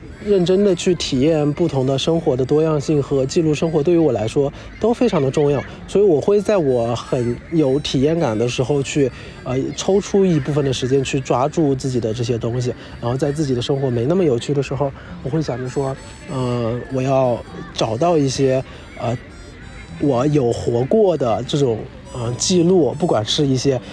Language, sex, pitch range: Chinese, male, 125-150 Hz